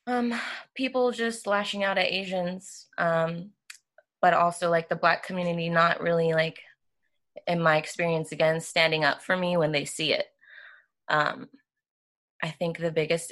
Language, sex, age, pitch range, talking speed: English, female, 20-39, 160-195 Hz, 155 wpm